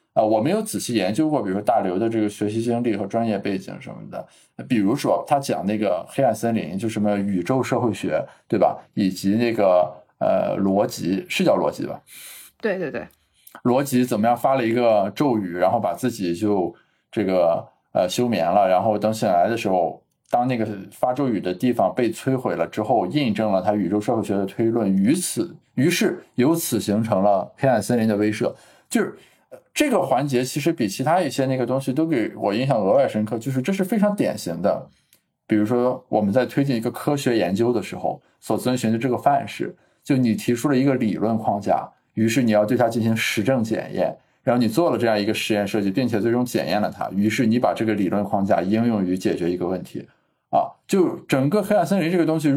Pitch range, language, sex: 105-130 Hz, Chinese, male